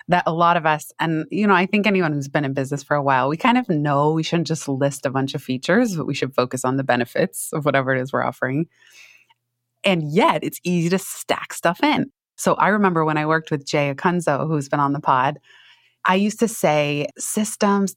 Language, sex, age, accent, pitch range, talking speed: English, female, 20-39, American, 150-200 Hz, 235 wpm